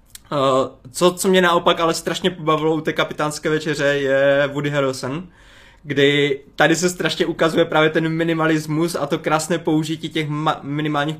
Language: Czech